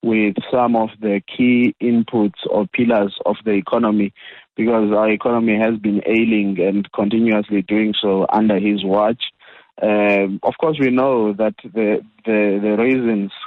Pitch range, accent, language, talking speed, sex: 105-120 Hz, South African, English, 150 wpm, male